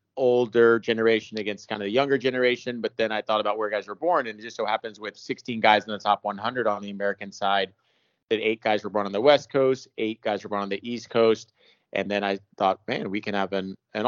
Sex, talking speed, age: male, 255 wpm, 30-49